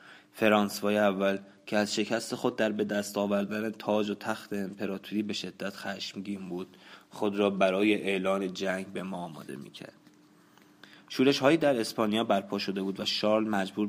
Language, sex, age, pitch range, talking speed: Persian, male, 20-39, 100-110 Hz, 160 wpm